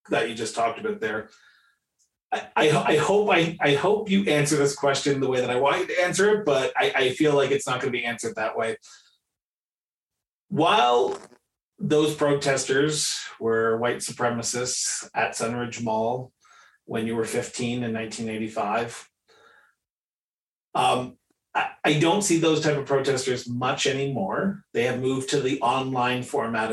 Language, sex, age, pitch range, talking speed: English, male, 30-49, 115-160 Hz, 160 wpm